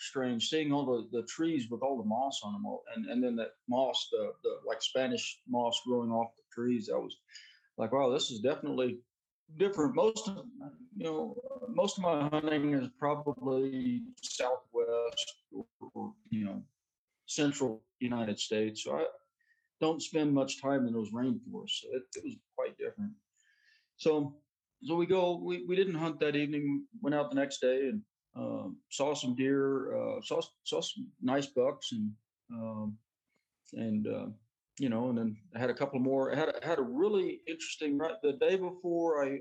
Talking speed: 180 wpm